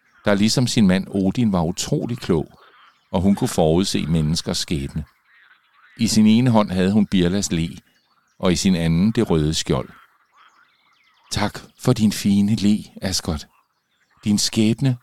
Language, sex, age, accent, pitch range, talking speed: Danish, male, 50-69, native, 95-130 Hz, 150 wpm